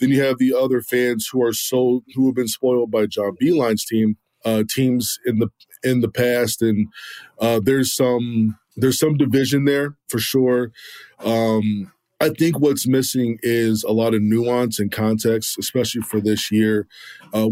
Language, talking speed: English, 175 wpm